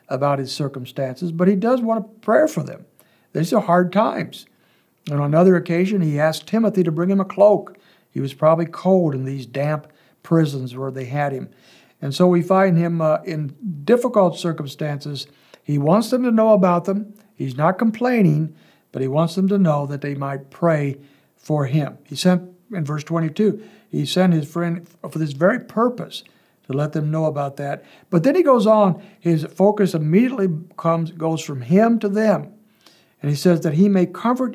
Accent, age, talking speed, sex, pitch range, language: American, 60-79, 190 wpm, male, 145-195 Hz, English